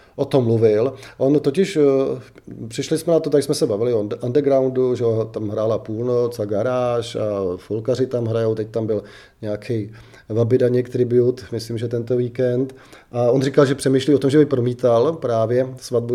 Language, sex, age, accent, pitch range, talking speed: Czech, male, 30-49, native, 115-135 Hz, 180 wpm